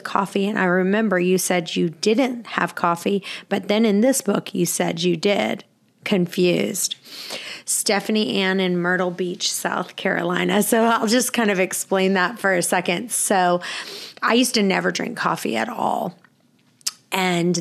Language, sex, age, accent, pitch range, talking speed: English, female, 30-49, American, 180-205 Hz, 160 wpm